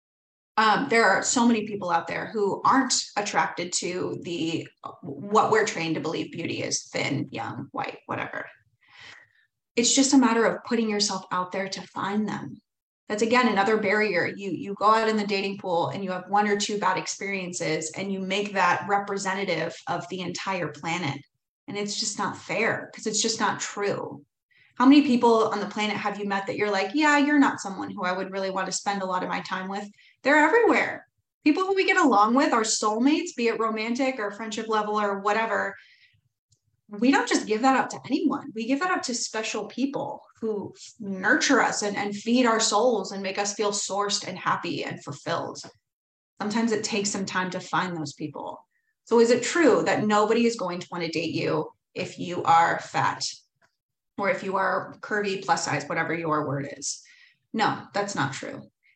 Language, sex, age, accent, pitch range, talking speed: English, female, 20-39, American, 185-235 Hz, 200 wpm